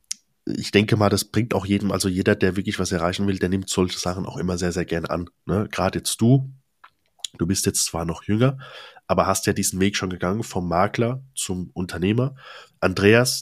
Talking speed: 205 wpm